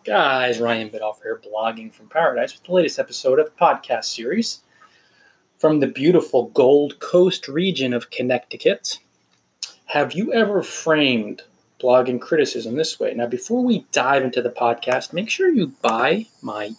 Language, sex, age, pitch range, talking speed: English, male, 30-49, 120-175 Hz, 155 wpm